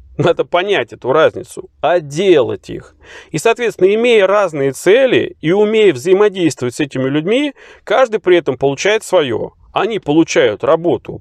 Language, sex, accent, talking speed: Russian, male, native, 140 wpm